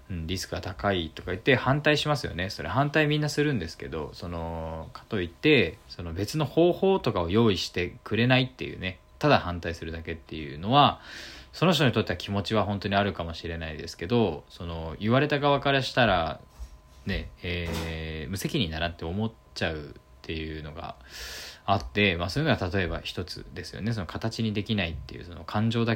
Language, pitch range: Japanese, 80-115 Hz